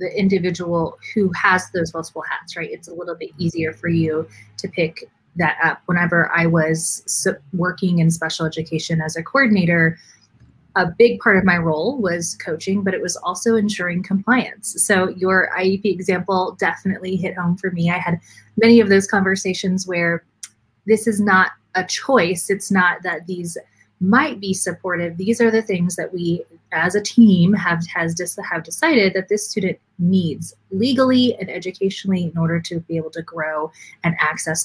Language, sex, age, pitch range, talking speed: English, female, 20-39, 165-195 Hz, 175 wpm